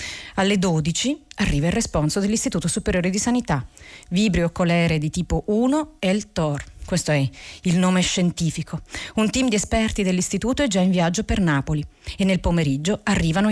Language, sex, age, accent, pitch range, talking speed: Italian, female, 40-59, native, 165-215 Hz, 165 wpm